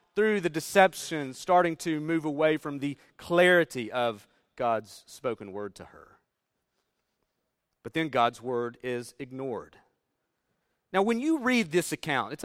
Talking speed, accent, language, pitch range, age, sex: 140 wpm, American, English, 130-180 Hz, 40-59, male